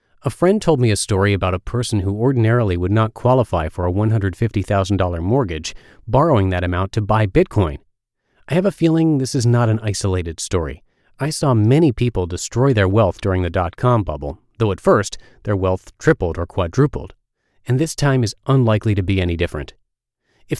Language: English